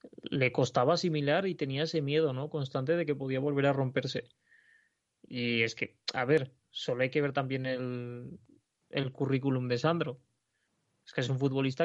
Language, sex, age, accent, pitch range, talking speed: Spanish, male, 20-39, Spanish, 130-150 Hz, 170 wpm